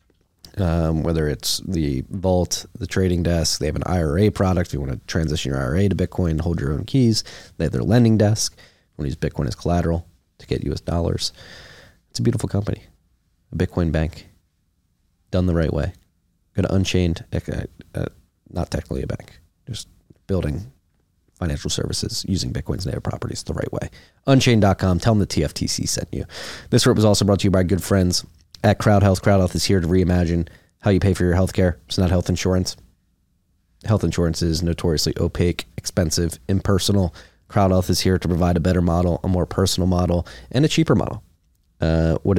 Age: 30-49